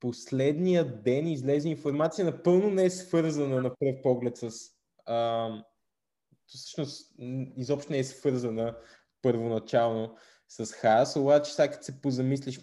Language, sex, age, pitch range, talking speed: Bulgarian, male, 20-39, 125-145 Hz, 125 wpm